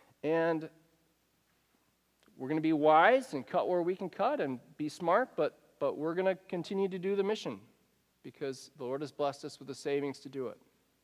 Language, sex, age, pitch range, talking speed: English, male, 40-59, 165-220 Hz, 200 wpm